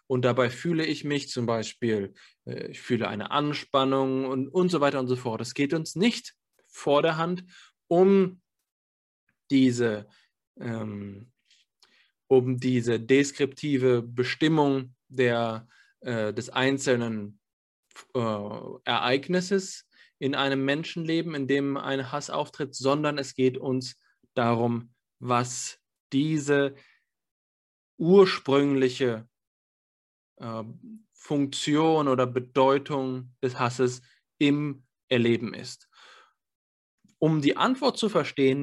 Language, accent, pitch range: German, German, 120-155 Hz